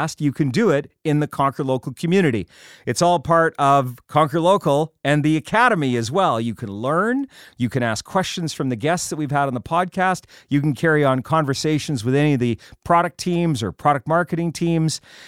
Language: English